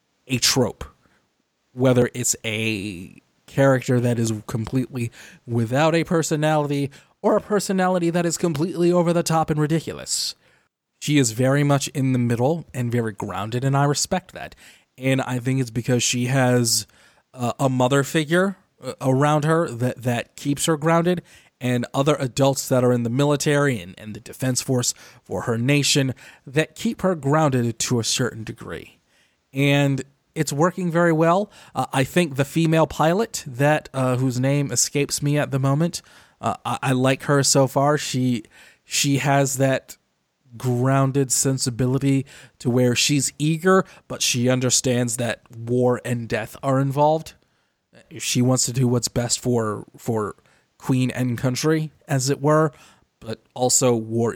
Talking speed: 155 wpm